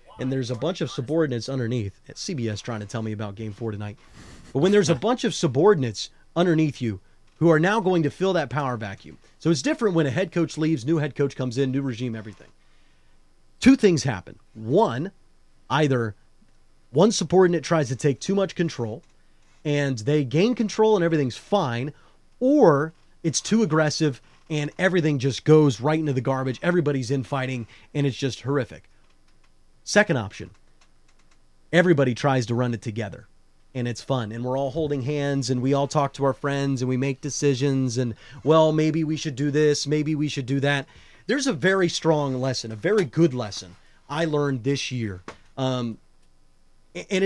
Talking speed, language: 185 wpm, English